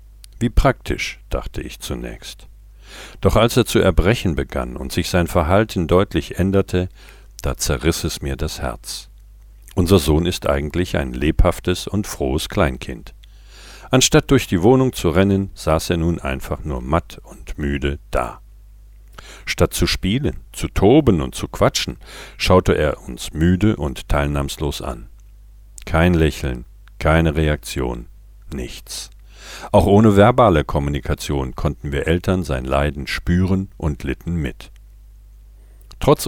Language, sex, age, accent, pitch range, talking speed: German, male, 50-69, German, 75-100 Hz, 135 wpm